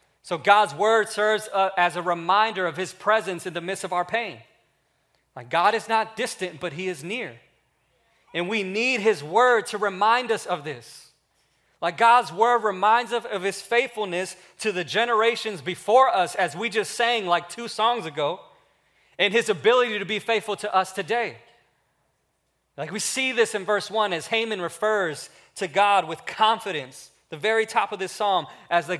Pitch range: 175-215 Hz